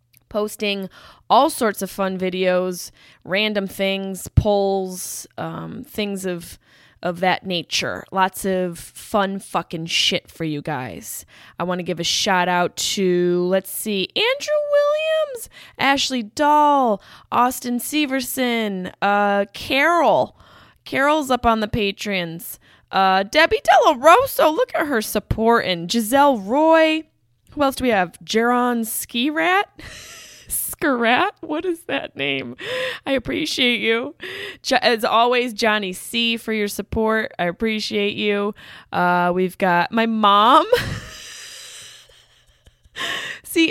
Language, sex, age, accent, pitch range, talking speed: English, female, 20-39, American, 180-255 Hz, 120 wpm